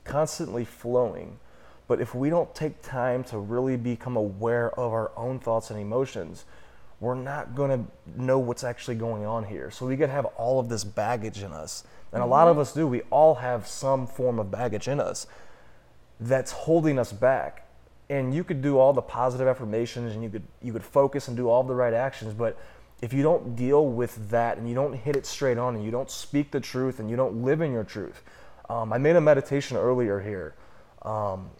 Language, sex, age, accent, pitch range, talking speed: English, male, 20-39, American, 110-130 Hz, 215 wpm